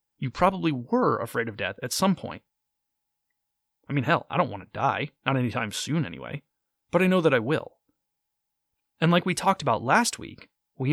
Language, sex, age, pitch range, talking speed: English, male, 30-49, 115-150 Hz, 190 wpm